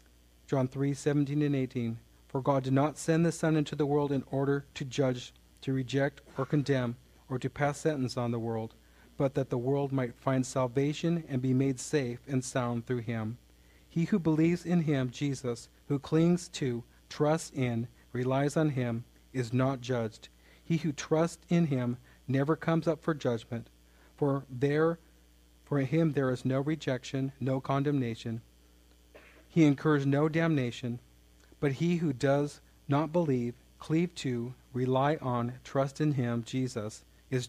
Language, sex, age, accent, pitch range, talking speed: English, male, 40-59, American, 120-145 Hz, 160 wpm